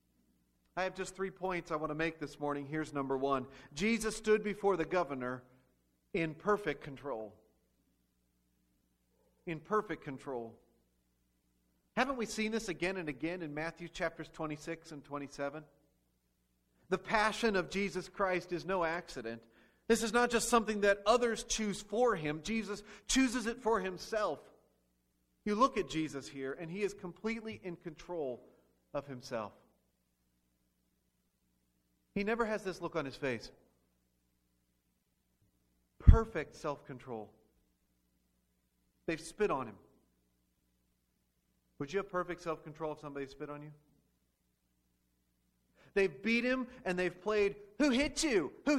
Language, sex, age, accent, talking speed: English, male, 40-59, American, 135 wpm